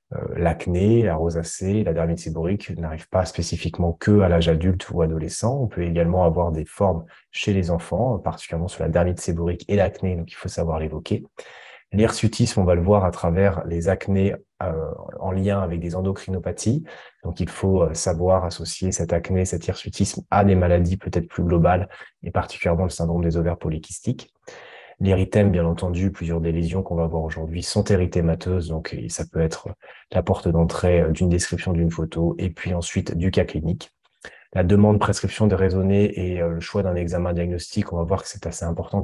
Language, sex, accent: French, male, French